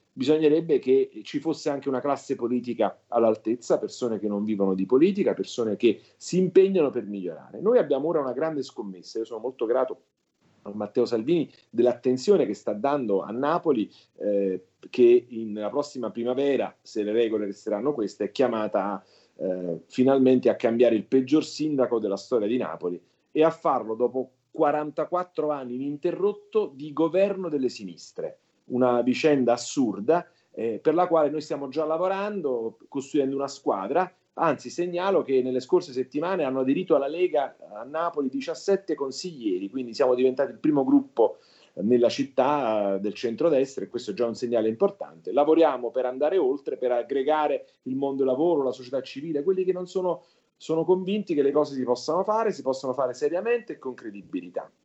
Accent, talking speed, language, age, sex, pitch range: native, 165 wpm, Italian, 40-59, male, 120-180 Hz